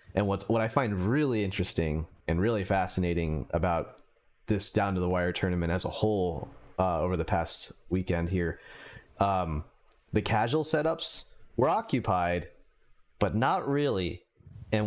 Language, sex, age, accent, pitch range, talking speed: English, male, 30-49, American, 90-115 Hz, 145 wpm